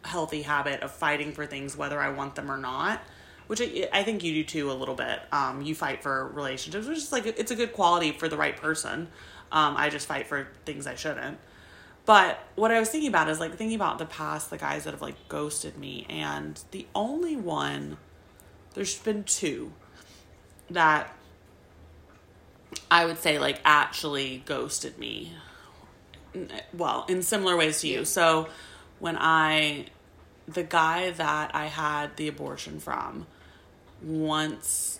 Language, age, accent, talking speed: English, 30-49, American, 170 wpm